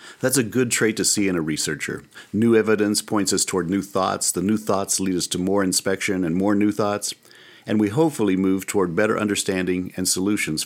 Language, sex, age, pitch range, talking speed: English, male, 50-69, 95-115 Hz, 210 wpm